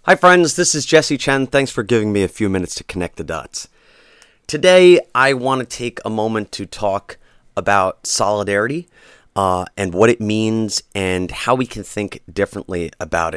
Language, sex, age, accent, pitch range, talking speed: English, male, 30-49, American, 85-115 Hz, 180 wpm